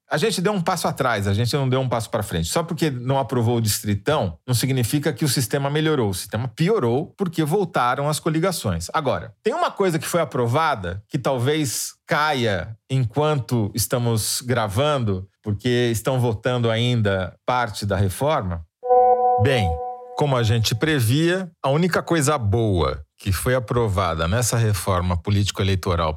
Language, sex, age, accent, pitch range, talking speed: Portuguese, male, 40-59, Brazilian, 100-135 Hz, 155 wpm